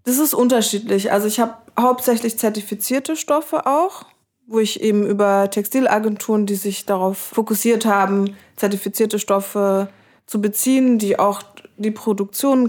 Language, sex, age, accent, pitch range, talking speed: German, female, 20-39, German, 195-225 Hz, 130 wpm